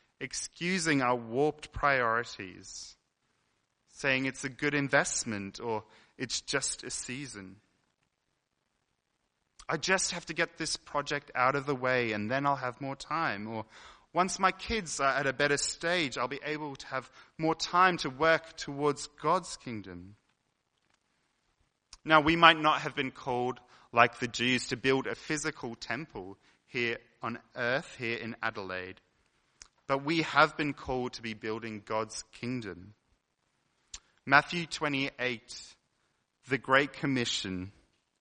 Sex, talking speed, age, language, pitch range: male, 140 wpm, 30-49, English, 110-145 Hz